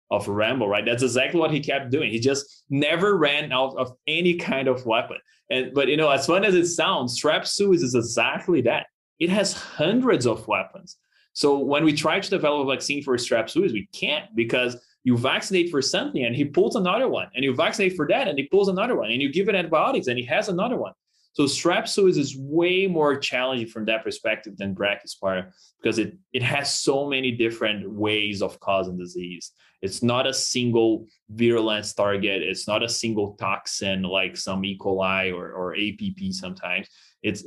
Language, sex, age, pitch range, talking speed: English, male, 20-39, 105-145 Hz, 195 wpm